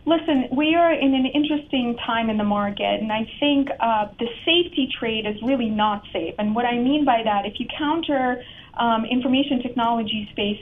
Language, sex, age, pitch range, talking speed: English, female, 30-49, 215-265 Hz, 190 wpm